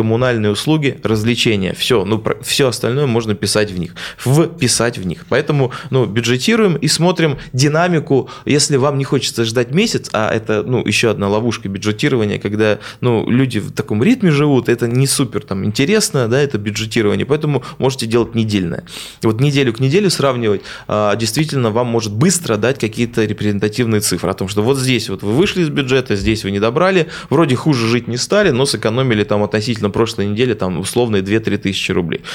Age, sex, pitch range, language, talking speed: 20-39, male, 110-145 Hz, Russian, 170 wpm